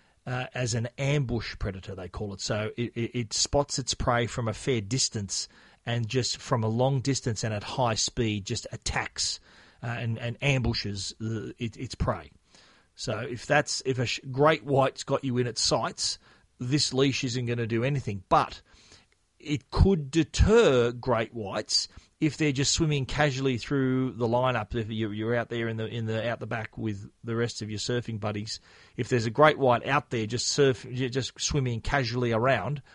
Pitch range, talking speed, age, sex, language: 110-135 Hz, 185 wpm, 40-59, male, English